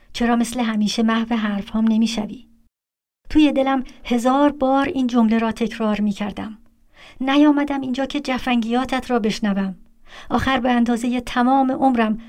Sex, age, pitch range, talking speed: male, 50-69, 215-245 Hz, 125 wpm